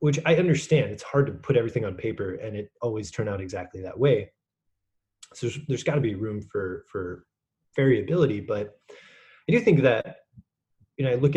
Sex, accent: male, American